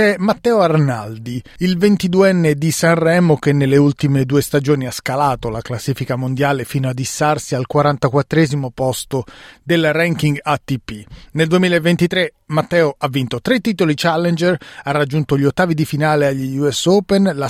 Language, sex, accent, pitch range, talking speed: Italian, male, native, 135-170 Hz, 145 wpm